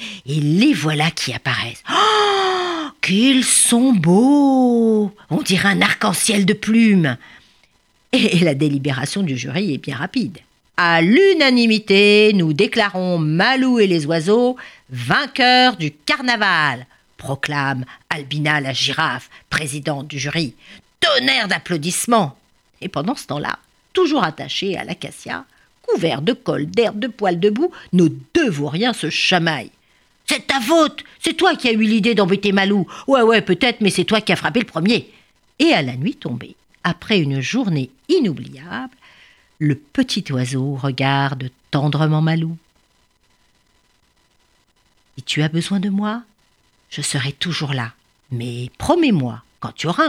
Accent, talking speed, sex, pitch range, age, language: French, 140 wpm, female, 150-235 Hz, 50-69, French